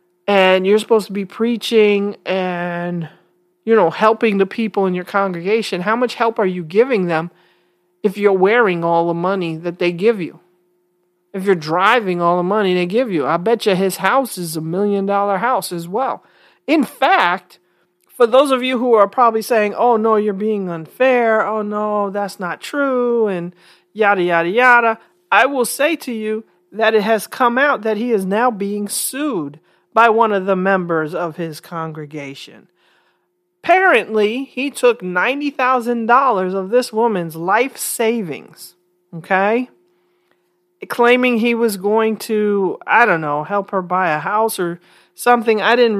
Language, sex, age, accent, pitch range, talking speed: English, male, 40-59, American, 175-230 Hz, 165 wpm